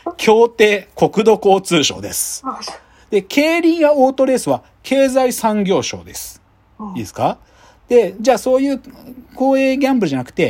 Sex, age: male, 40-59